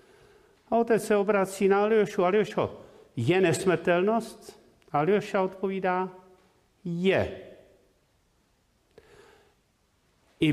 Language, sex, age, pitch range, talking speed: Czech, male, 50-69, 140-210 Hz, 75 wpm